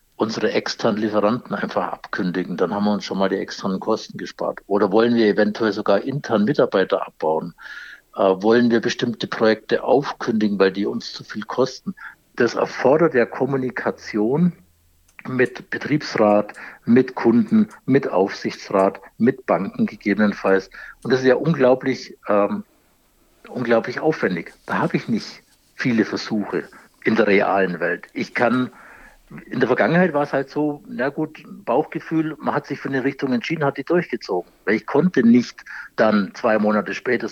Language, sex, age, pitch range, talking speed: German, male, 60-79, 105-145 Hz, 155 wpm